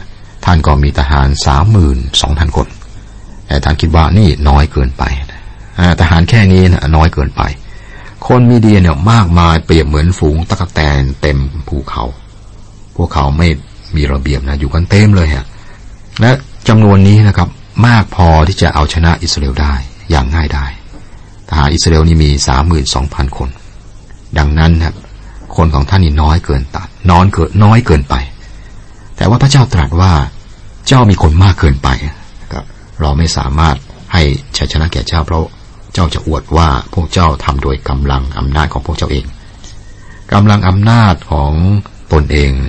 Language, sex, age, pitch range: Thai, male, 60-79, 75-100 Hz